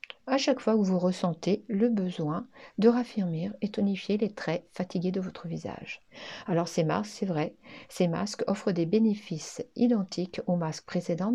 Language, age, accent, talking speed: French, 60-79, French, 170 wpm